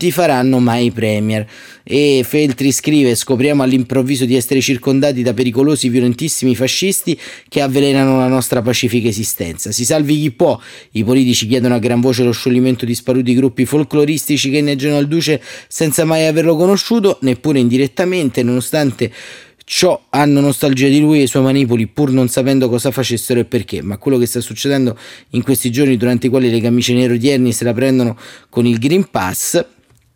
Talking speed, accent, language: 175 wpm, native, Italian